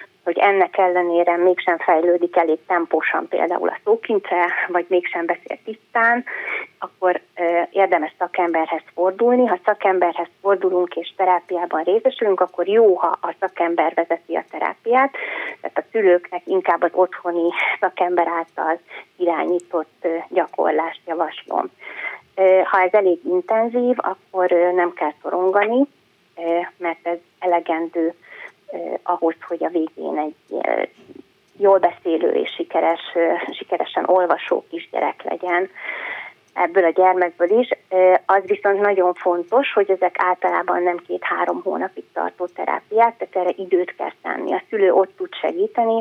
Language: Hungarian